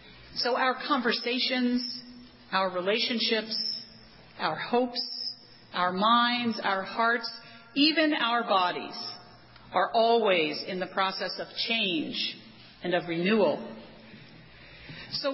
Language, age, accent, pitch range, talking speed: English, 40-59, American, 205-275 Hz, 100 wpm